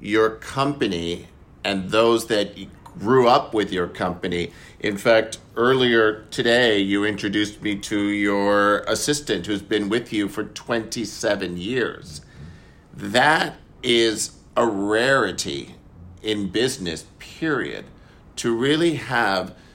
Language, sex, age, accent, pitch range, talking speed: English, male, 50-69, American, 100-125 Hz, 110 wpm